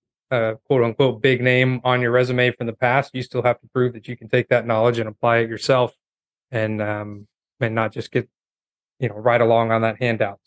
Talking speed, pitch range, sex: 225 wpm, 115-135 Hz, male